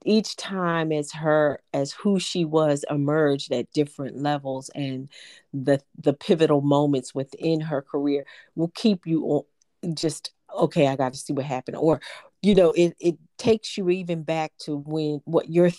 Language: English